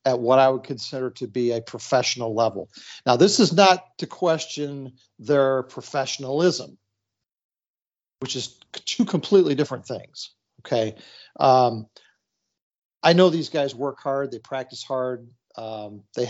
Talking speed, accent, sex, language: 135 wpm, American, male, English